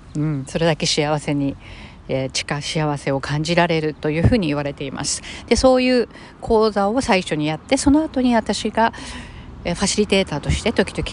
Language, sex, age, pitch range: Japanese, female, 50-69, 140-205 Hz